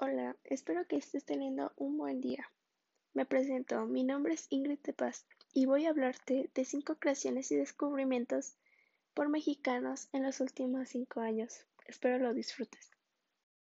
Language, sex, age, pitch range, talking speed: Spanish, female, 10-29, 235-270 Hz, 155 wpm